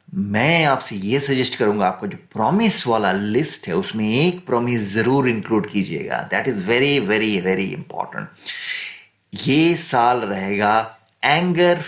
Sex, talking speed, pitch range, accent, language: male, 135 wpm, 115-155 Hz, Indian, English